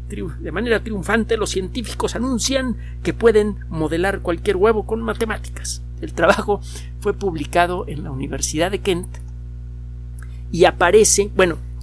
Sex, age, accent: male, 50-69, Mexican